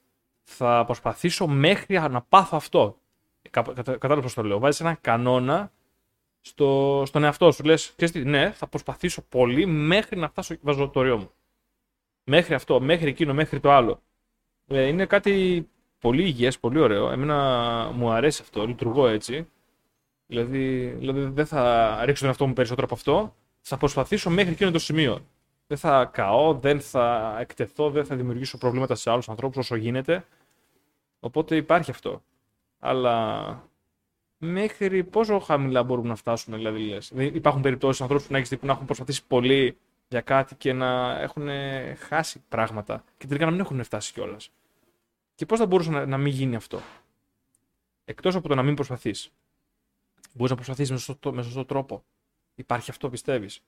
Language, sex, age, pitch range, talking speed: Greek, male, 20-39, 125-155 Hz, 155 wpm